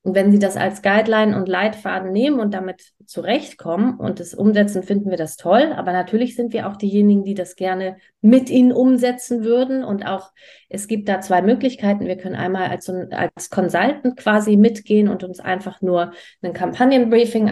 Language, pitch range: German, 180-215 Hz